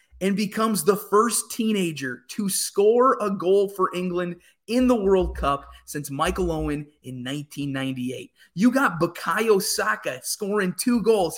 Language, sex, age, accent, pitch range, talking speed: English, male, 20-39, American, 160-215 Hz, 140 wpm